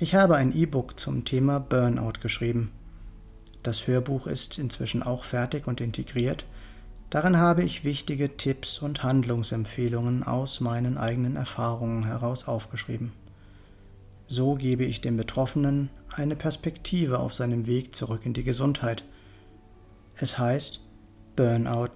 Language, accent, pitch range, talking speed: German, German, 110-135 Hz, 125 wpm